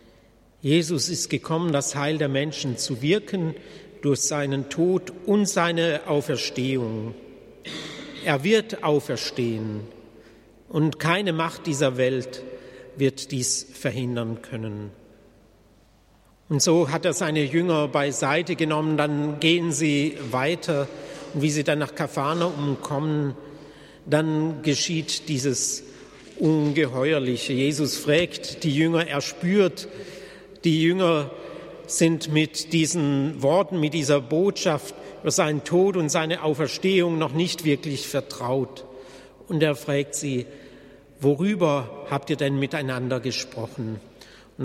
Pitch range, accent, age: 135-165 Hz, German, 50-69